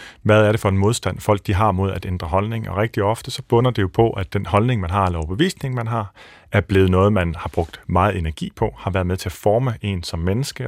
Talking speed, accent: 270 wpm, native